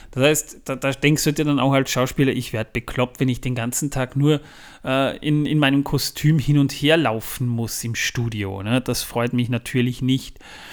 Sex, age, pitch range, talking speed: male, 30-49, 130-150 Hz, 215 wpm